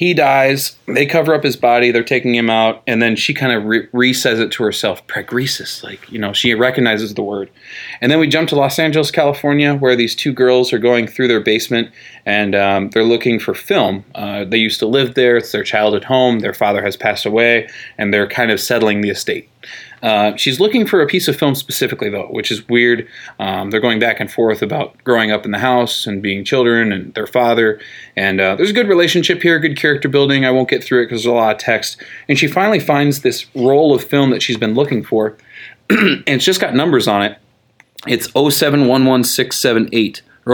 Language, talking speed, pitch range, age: English, 220 wpm, 110-140 Hz, 20-39